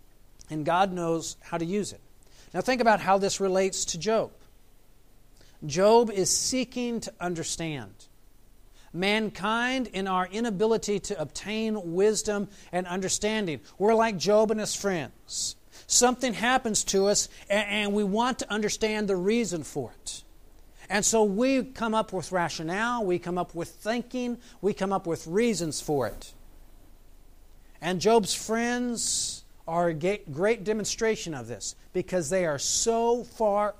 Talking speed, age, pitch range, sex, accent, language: 145 wpm, 50-69, 155-215 Hz, male, American, English